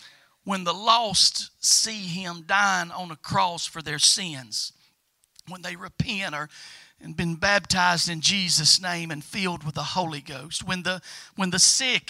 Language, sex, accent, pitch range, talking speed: English, male, American, 175-225 Hz, 160 wpm